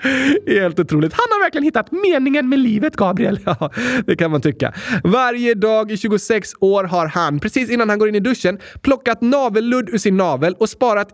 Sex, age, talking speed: male, 20-39, 205 wpm